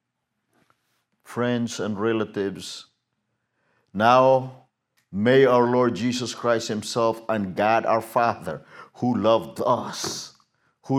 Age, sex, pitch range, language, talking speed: 50-69, male, 110-140 Hz, English, 100 wpm